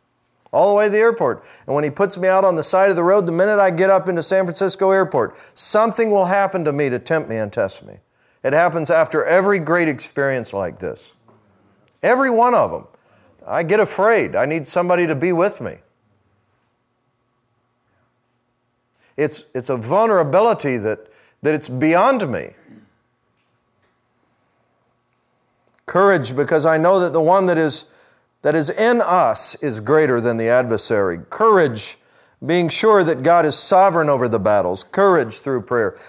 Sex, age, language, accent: male, 50-69, English, American